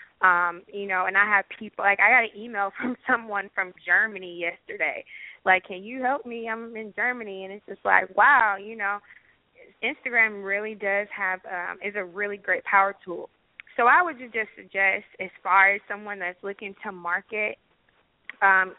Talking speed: 185 wpm